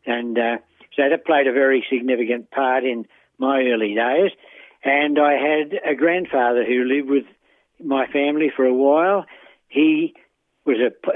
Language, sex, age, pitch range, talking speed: English, male, 60-79, 125-145 Hz, 155 wpm